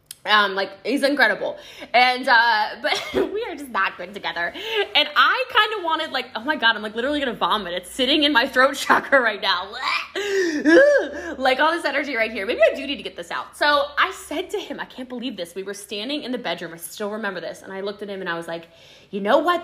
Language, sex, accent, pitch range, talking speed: English, female, American, 225-355 Hz, 250 wpm